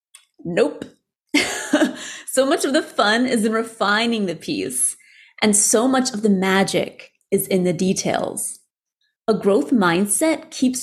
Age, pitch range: 30-49, 200-280 Hz